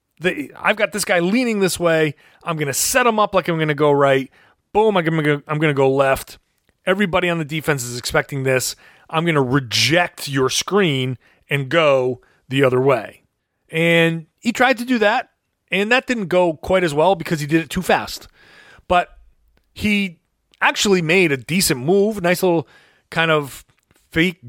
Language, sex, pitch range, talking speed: English, male, 140-200 Hz, 175 wpm